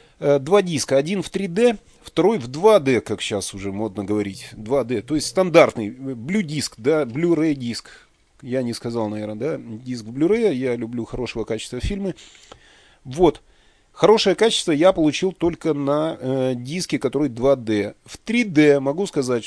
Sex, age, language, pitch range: male, 30-49, Ukrainian, 125-175 Hz